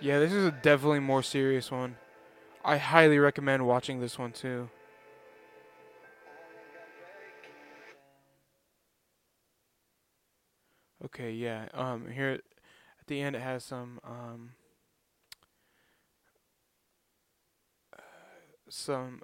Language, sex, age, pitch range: English, male, 10-29, 115-135 Hz